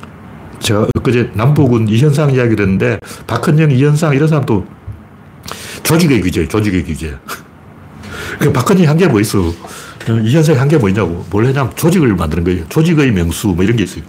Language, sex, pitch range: Korean, male, 105-155 Hz